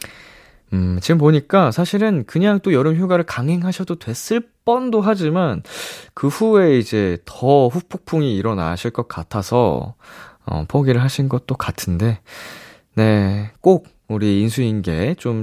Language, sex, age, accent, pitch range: Korean, male, 20-39, native, 105-160 Hz